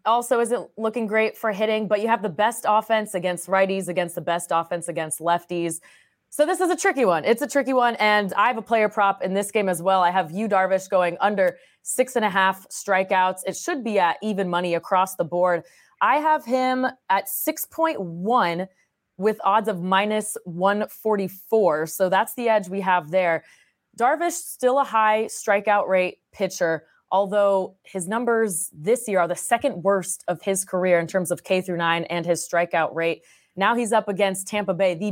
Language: English